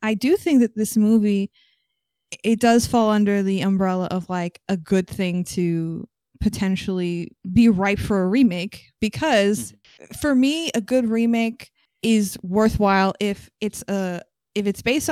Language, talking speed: English, 150 wpm